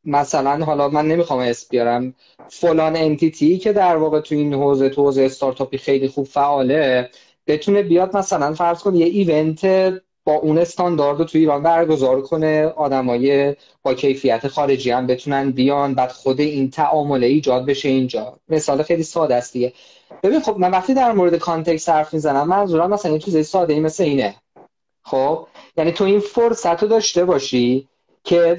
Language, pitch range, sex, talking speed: Persian, 135-180 Hz, male, 155 wpm